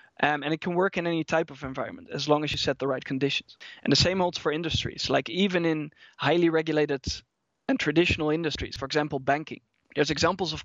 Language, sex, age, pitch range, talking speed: English, male, 20-39, 145-170 Hz, 215 wpm